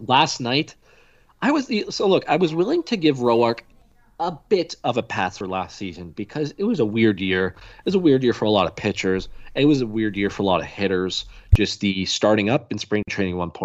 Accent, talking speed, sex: American, 235 wpm, male